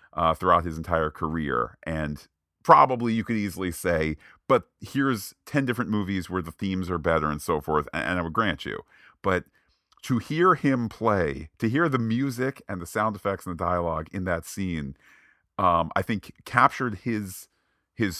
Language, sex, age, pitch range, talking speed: English, male, 40-59, 80-100 Hz, 180 wpm